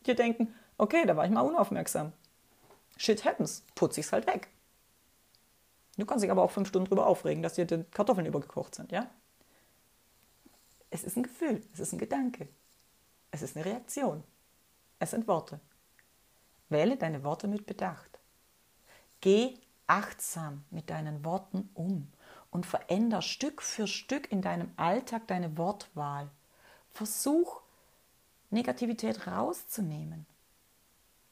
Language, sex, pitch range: German, female, 175-230 Hz